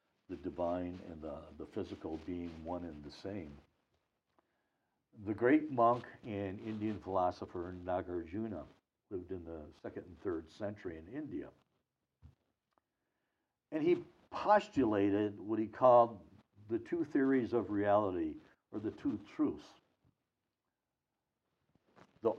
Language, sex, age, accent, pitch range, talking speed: English, male, 60-79, American, 100-150 Hz, 115 wpm